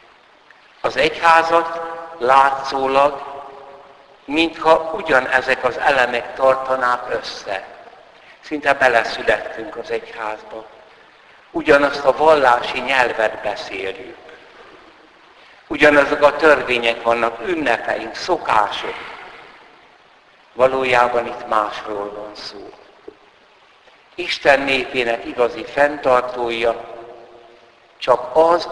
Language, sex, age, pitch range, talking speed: Hungarian, male, 60-79, 125-160 Hz, 75 wpm